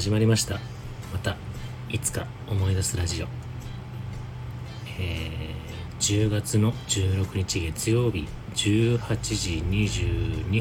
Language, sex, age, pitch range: Japanese, male, 40-59, 105-125 Hz